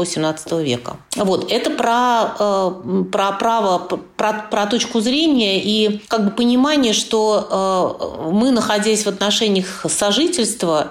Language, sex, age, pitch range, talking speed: Russian, female, 40-59, 200-245 Hz, 125 wpm